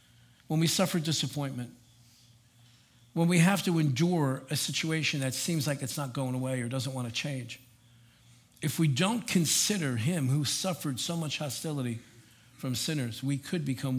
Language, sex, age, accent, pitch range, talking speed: English, male, 50-69, American, 120-155 Hz, 165 wpm